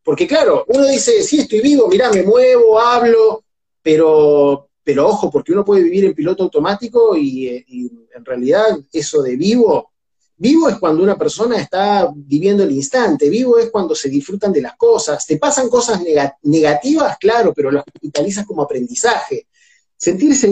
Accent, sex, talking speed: Argentinian, male, 165 wpm